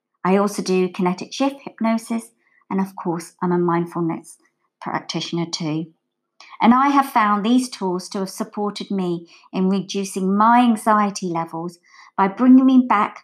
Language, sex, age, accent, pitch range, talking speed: English, male, 50-69, British, 175-235 Hz, 150 wpm